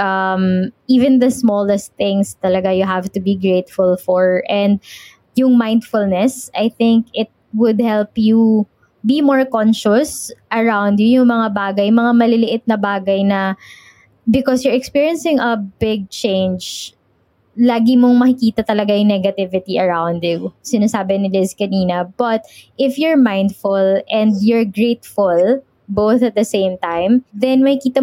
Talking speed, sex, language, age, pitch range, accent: 145 wpm, female, English, 20-39, 200-240 Hz, Filipino